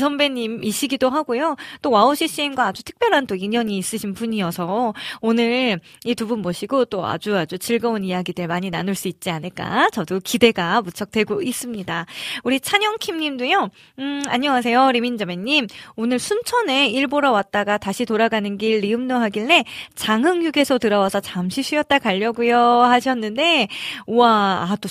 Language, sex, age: Korean, female, 20-39